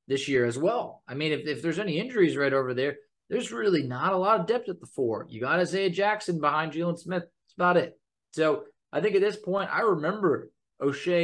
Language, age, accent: English, 20-39, American